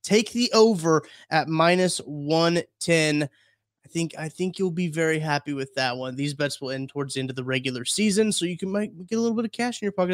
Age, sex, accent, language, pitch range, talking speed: 20-39, male, American, English, 140-195 Hz, 245 wpm